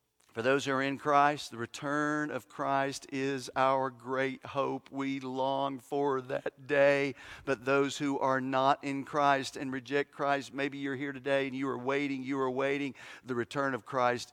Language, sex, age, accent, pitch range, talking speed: English, male, 50-69, American, 135-200 Hz, 185 wpm